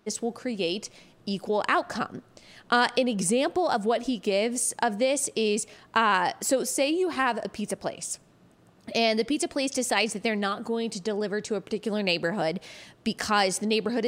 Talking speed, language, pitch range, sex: 175 wpm, English, 210-260 Hz, female